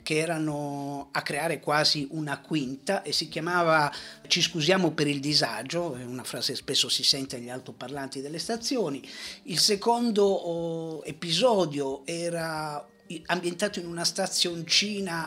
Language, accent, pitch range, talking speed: Italian, native, 145-180 Hz, 135 wpm